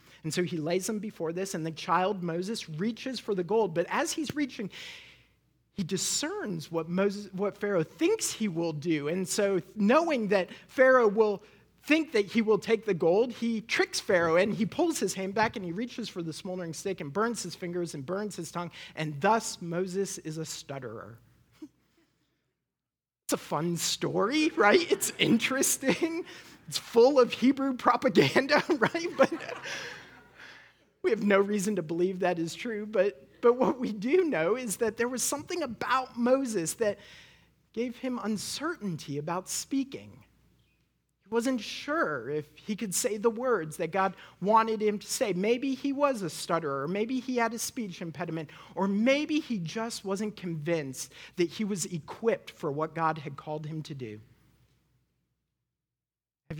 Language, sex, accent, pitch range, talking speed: English, male, American, 175-245 Hz, 170 wpm